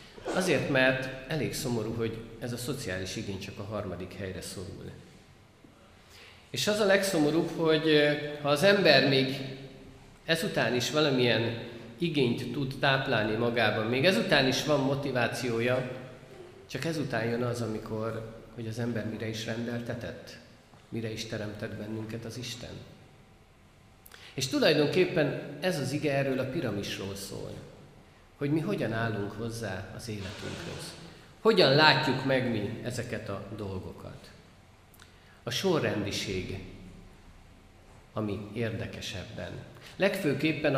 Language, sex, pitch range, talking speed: Hungarian, male, 105-135 Hz, 120 wpm